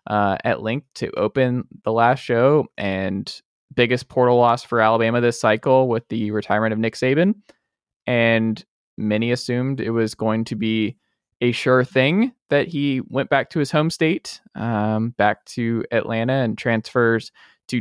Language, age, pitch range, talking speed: English, 20-39, 115-145 Hz, 160 wpm